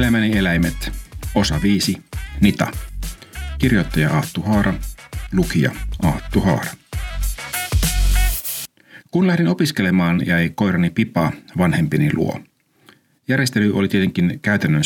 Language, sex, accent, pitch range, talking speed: Finnish, male, native, 85-110 Hz, 95 wpm